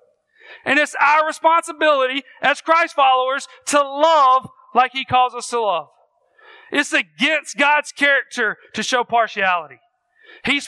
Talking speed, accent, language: 130 wpm, American, English